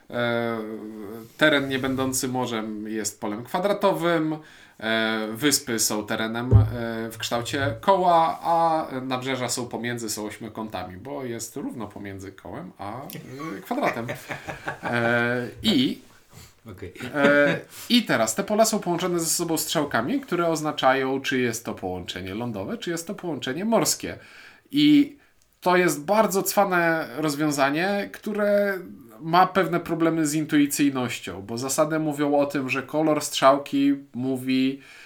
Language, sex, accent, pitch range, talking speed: Polish, male, native, 120-155 Hz, 130 wpm